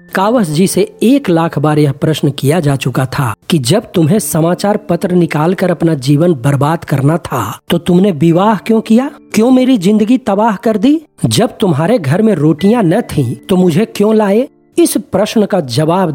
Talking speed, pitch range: 180 wpm, 155-215 Hz